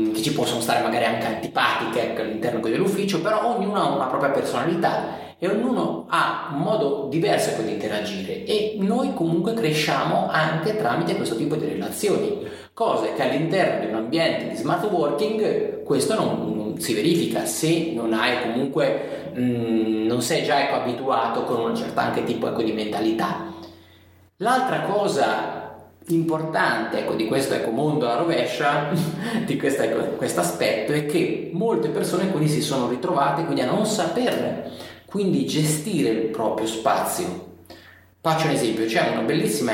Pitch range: 110-160 Hz